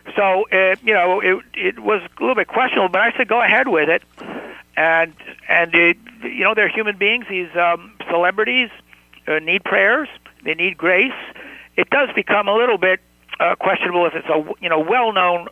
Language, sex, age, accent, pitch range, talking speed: English, male, 60-79, American, 145-185 Hz, 190 wpm